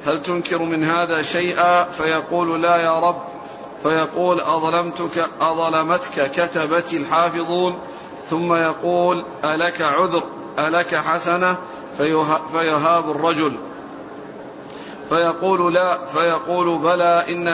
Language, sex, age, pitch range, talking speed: Arabic, male, 50-69, 165-180 Hz, 90 wpm